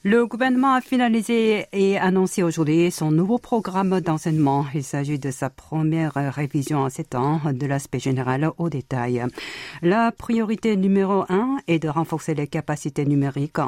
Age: 50-69